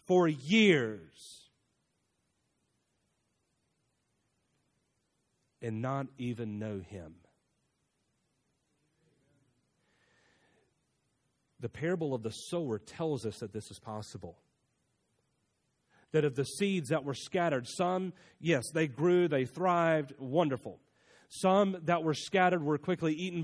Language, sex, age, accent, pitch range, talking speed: English, male, 40-59, American, 120-175 Hz, 100 wpm